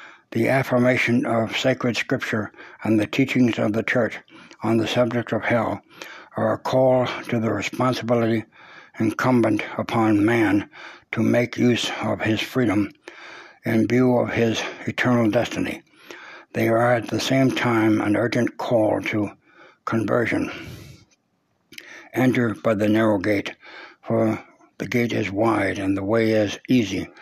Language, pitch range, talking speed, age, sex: English, 110-120 Hz, 140 wpm, 60-79, male